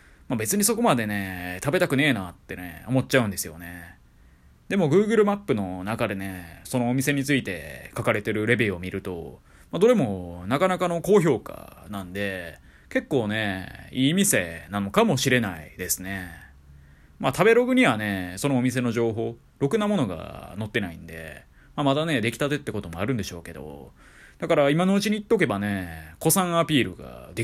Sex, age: male, 20-39